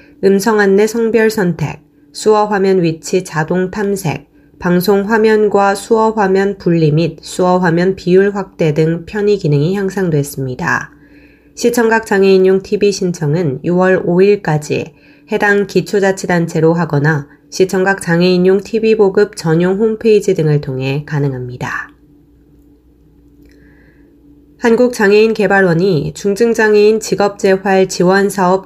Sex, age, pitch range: female, 20-39, 155-200 Hz